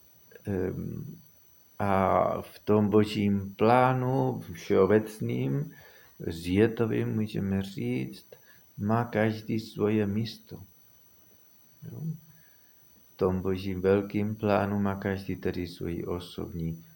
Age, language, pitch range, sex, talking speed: 50-69, Czech, 90-105 Hz, male, 80 wpm